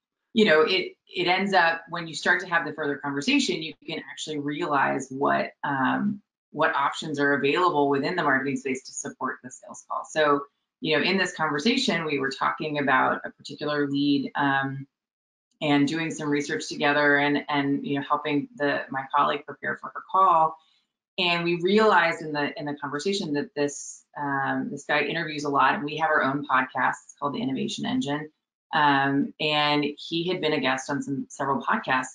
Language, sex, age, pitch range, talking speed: English, female, 30-49, 140-170 Hz, 185 wpm